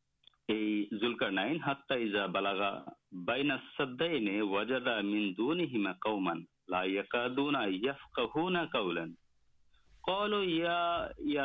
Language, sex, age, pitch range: Urdu, male, 50-69, 100-150 Hz